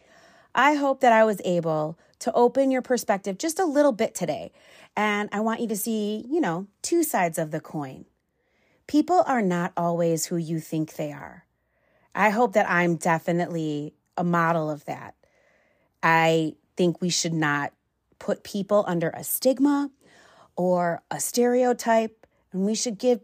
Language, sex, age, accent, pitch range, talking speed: English, female, 30-49, American, 165-220 Hz, 165 wpm